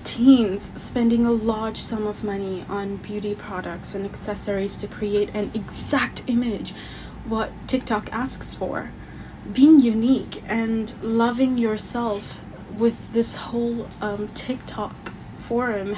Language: English